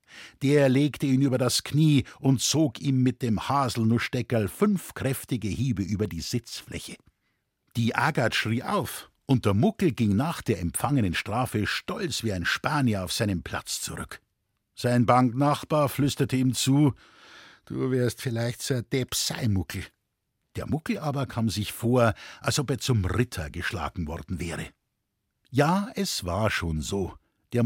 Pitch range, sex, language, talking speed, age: 100-140 Hz, male, German, 150 wpm, 60-79